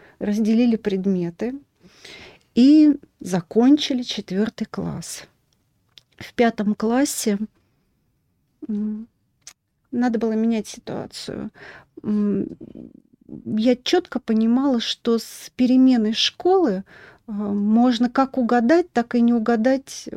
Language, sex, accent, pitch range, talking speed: Russian, female, native, 205-240 Hz, 80 wpm